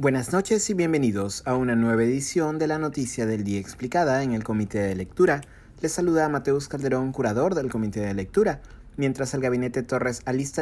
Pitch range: 115-145 Hz